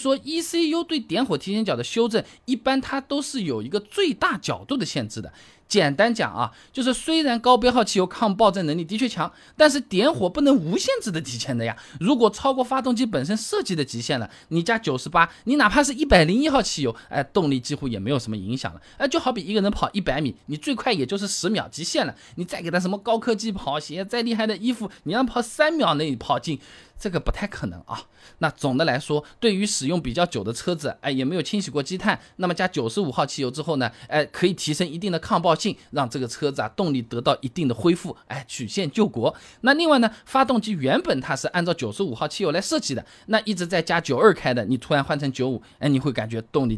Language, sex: Chinese, male